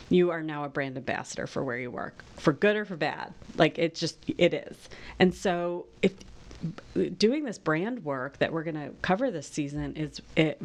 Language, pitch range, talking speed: English, 150-180 Hz, 205 wpm